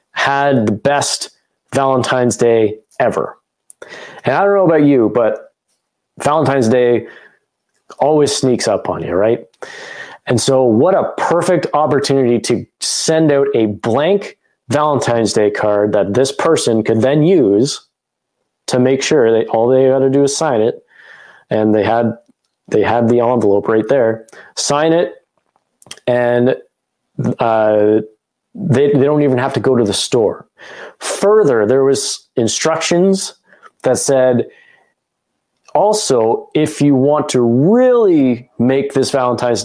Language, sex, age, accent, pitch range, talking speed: English, male, 20-39, American, 115-145 Hz, 140 wpm